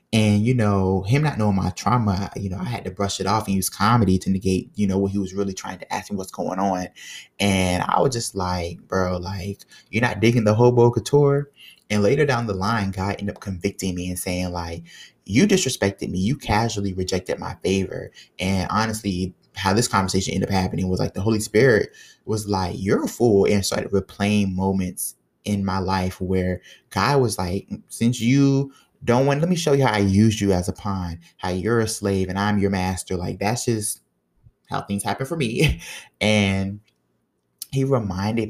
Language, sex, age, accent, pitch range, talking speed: English, male, 20-39, American, 95-110 Hz, 205 wpm